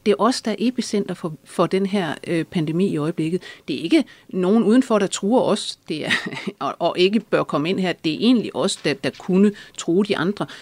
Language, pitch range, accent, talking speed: Danish, 155-210 Hz, native, 230 wpm